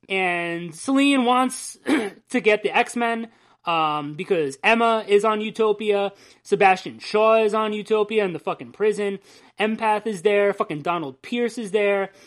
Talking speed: 145 wpm